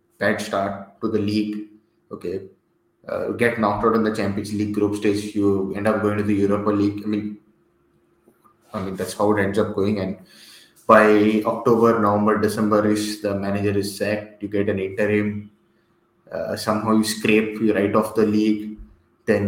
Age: 20-39